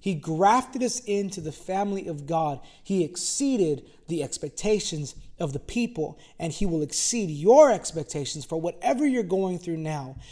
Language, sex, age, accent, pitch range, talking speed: English, male, 20-39, American, 155-200 Hz, 155 wpm